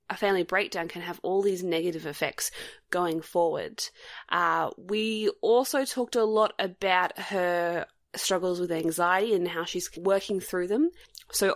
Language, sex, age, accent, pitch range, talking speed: English, female, 20-39, Australian, 175-245 Hz, 150 wpm